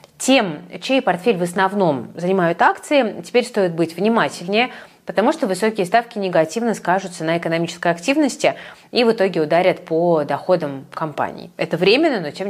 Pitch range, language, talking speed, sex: 160-215 Hz, Russian, 150 wpm, female